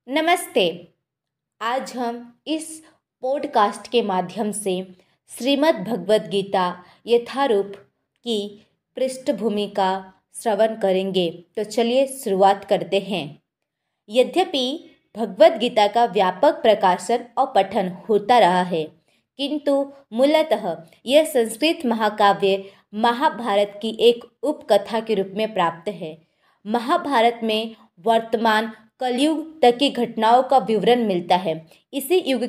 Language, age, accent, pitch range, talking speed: Hindi, 20-39, native, 200-260 Hz, 105 wpm